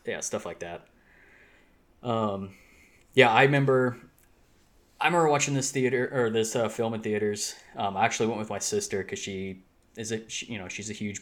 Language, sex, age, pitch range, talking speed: English, male, 20-39, 95-115 Hz, 195 wpm